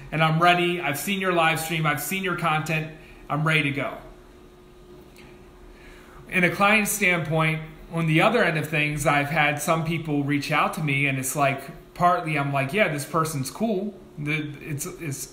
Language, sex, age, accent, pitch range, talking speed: English, male, 30-49, American, 145-175 Hz, 175 wpm